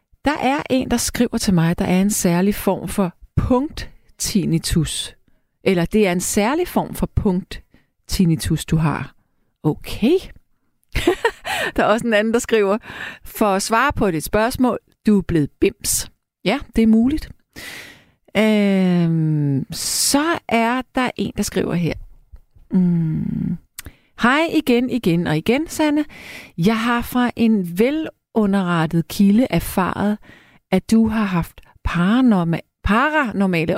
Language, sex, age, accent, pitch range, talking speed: Danish, female, 40-59, native, 170-235 Hz, 135 wpm